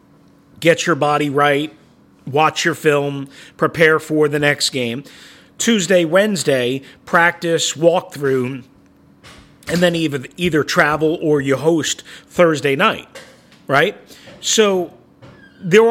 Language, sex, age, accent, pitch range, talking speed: English, male, 40-59, American, 150-195 Hz, 115 wpm